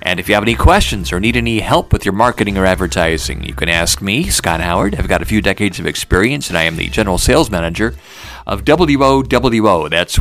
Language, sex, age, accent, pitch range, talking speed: English, male, 50-69, American, 95-130 Hz, 225 wpm